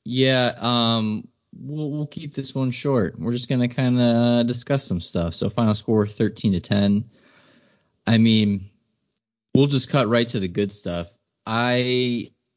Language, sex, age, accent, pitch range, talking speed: English, male, 20-39, American, 95-120 Hz, 160 wpm